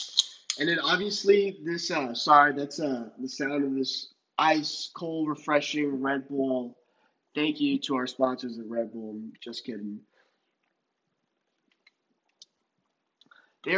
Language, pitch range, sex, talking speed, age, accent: English, 145-185 Hz, male, 120 wpm, 20-39, American